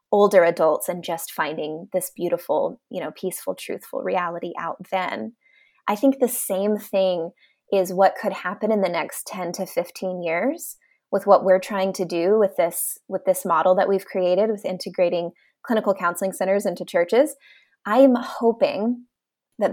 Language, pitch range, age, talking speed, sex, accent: English, 180-210 Hz, 20-39, 165 wpm, female, American